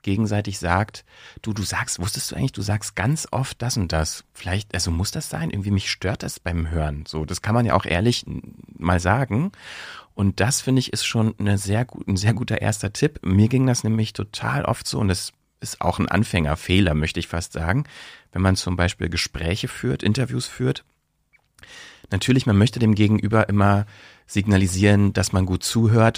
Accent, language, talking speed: German, German, 190 wpm